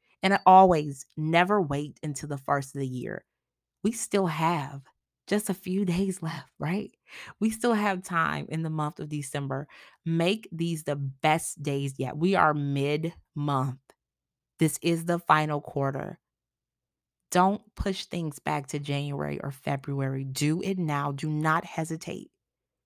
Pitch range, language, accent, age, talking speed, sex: 145-185 Hz, English, American, 30-49, 145 wpm, female